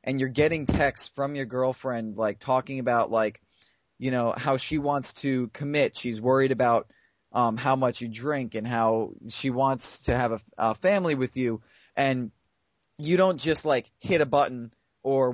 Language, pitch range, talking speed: English, 120-140 Hz, 180 wpm